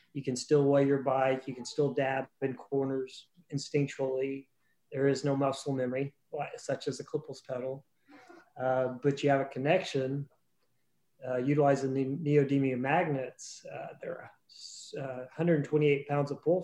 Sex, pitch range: male, 130-145 Hz